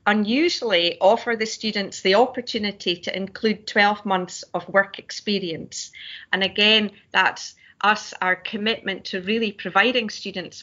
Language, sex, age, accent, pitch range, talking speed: English, female, 40-59, British, 180-230 Hz, 130 wpm